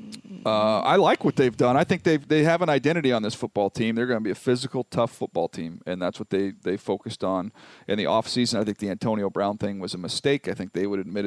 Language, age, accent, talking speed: English, 40-59, American, 265 wpm